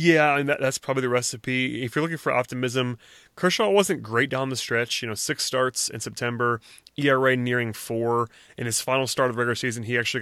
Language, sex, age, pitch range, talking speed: English, male, 30-49, 115-130 Hz, 225 wpm